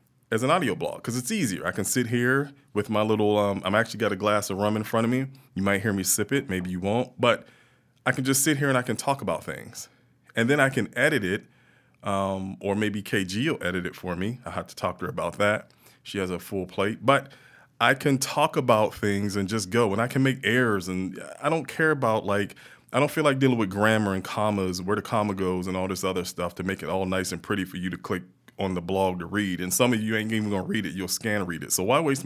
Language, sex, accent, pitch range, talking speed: English, male, American, 95-125 Hz, 270 wpm